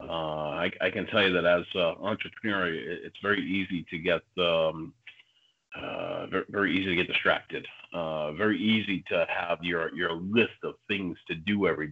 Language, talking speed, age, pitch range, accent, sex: English, 185 wpm, 40-59, 85-100 Hz, American, male